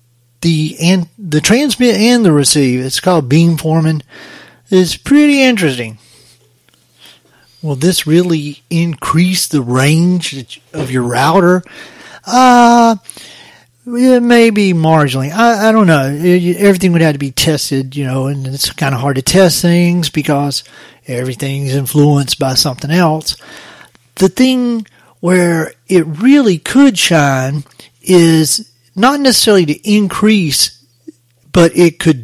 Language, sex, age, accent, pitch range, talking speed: English, male, 40-59, American, 135-180 Hz, 130 wpm